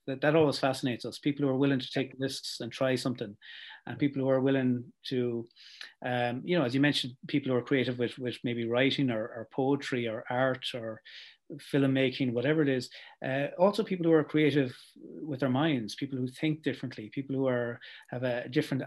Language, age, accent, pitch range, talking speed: English, 30-49, Irish, 120-145 Hz, 205 wpm